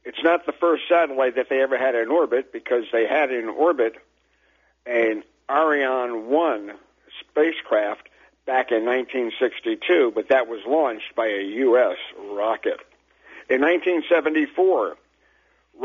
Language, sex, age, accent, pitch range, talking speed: English, male, 60-79, American, 130-185 Hz, 125 wpm